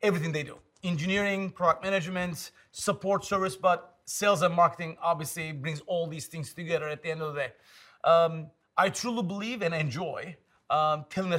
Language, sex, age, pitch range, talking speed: English, male, 30-49, 170-205 Hz, 175 wpm